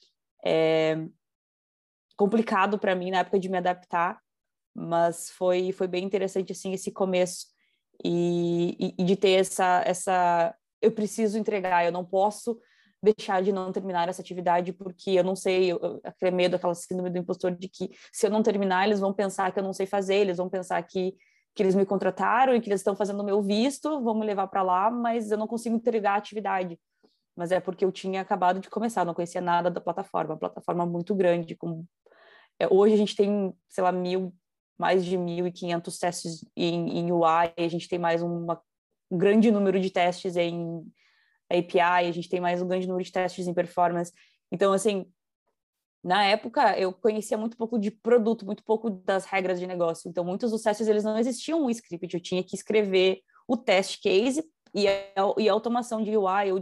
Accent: Brazilian